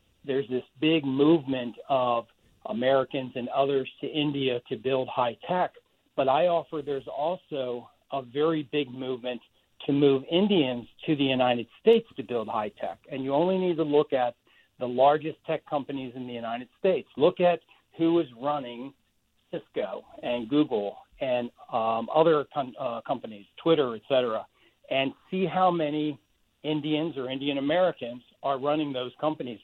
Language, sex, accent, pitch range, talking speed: English, male, American, 125-155 Hz, 155 wpm